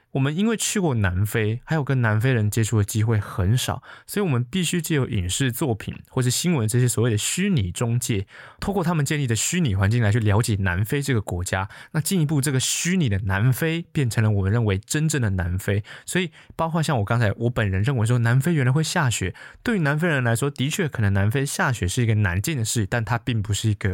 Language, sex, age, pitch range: Chinese, male, 20-39, 105-140 Hz